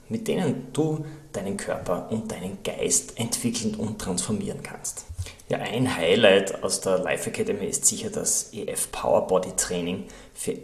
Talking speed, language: 150 wpm, German